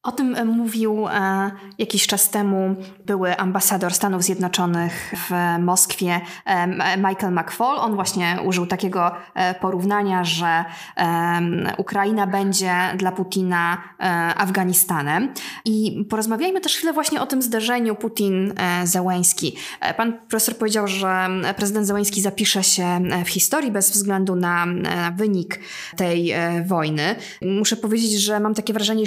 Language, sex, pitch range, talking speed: Polish, female, 185-220 Hz, 115 wpm